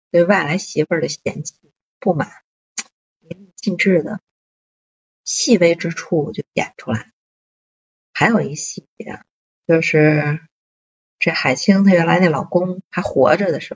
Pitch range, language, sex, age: 150-190 Hz, Chinese, female, 50-69